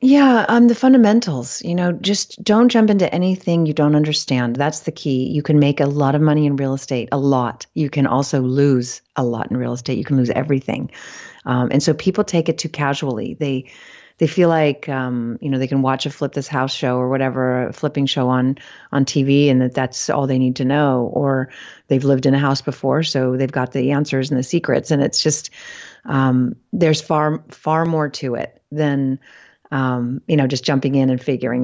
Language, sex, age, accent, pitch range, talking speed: English, female, 40-59, American, 135-165 Hz, 220 wpm